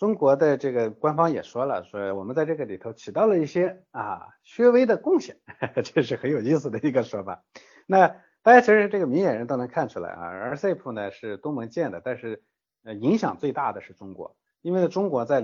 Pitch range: 100-165 Hz